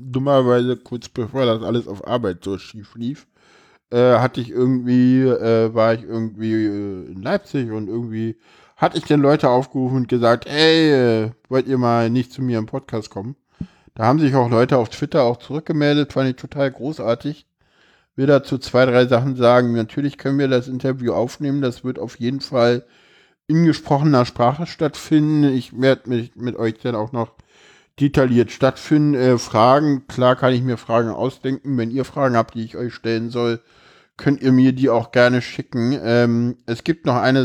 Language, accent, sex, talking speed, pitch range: German, German, male, 185 wpm, 120-140 Hz